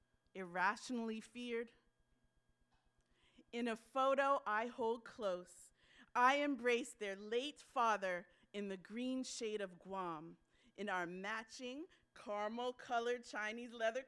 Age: 40-59